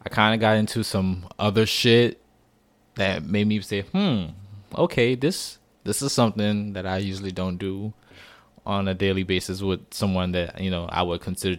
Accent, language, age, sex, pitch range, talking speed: American, English, 20-39, male, 90-110 Hz, 180 wpm